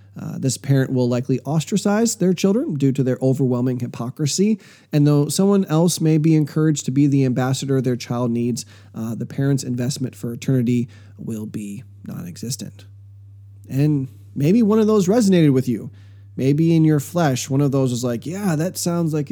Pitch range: 110-155 Hz